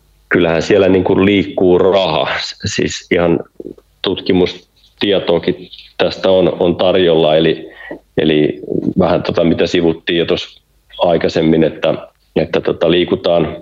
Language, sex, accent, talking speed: Finnish, male, native, 105 wpm